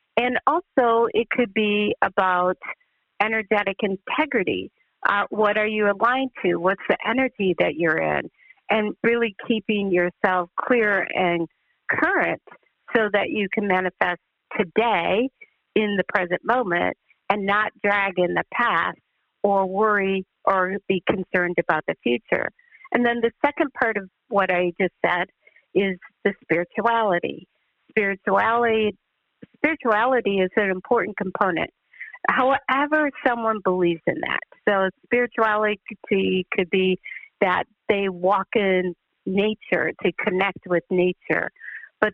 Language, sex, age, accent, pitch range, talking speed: English, female, 50-69, American, 185-230 Hz, 125 wpm